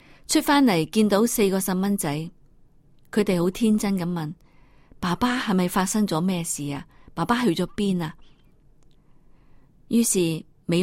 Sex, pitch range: female, 150-200 Hz